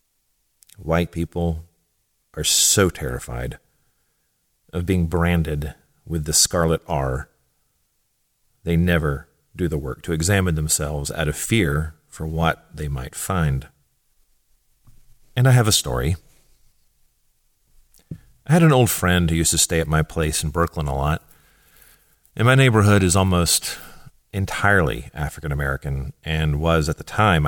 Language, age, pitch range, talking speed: English, 40-59, 75-100 Hz, 135 wpm